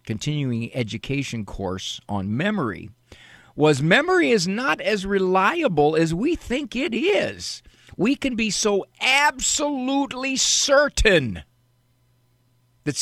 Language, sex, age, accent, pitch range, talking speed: English, male, 50-69, American, 110-175 Hz, 105 wpm